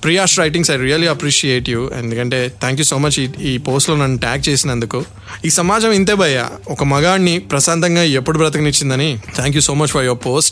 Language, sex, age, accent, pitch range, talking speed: Telugu, male, 20-39, native, 125-150 Hz, 195 wpm